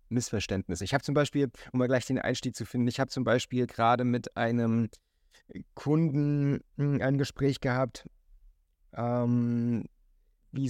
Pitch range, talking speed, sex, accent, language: 105-125 Hz, 140 wpm, male, German, German